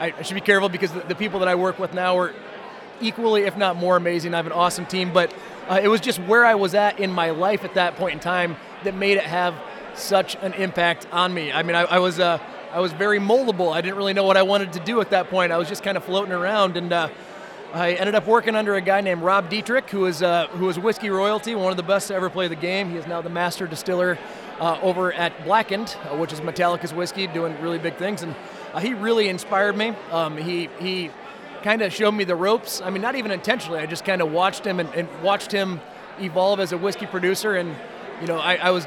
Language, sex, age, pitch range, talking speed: English, male, 20-39, 175-205 Hz, 255 wpm